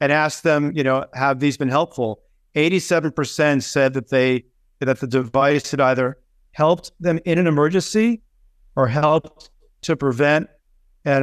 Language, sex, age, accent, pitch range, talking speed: English, male, 50-69, American, 135-155 Hz, 150 wpm